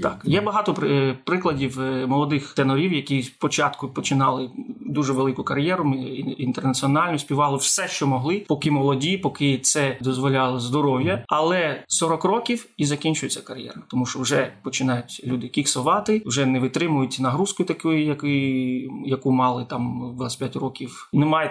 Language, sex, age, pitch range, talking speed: Ukrainian, male, 30-49, 130-160 Hz, 125 wpm